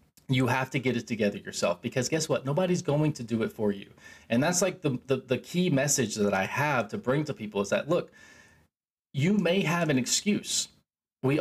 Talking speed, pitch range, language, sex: 215 wpm, 120-160 Hz, English, male